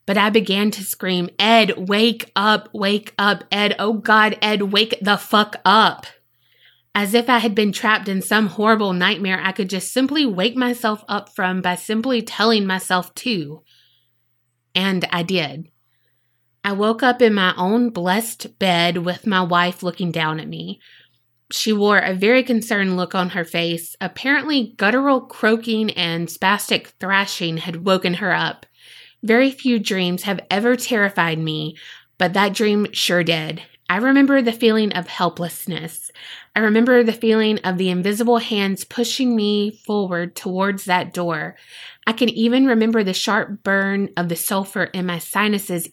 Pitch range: 175-220 Hz